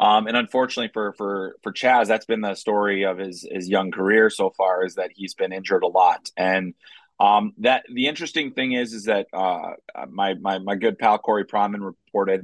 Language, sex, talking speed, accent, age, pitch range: English, male, 205 wpm, American, 30-49, 95-105 Hz